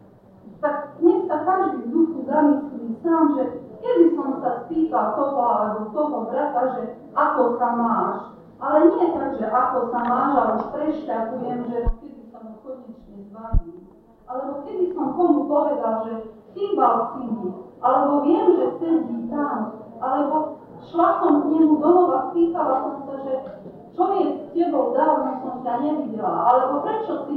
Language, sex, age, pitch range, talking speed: Slovak, female, 40-59, 230-295 Hz, 150 wpm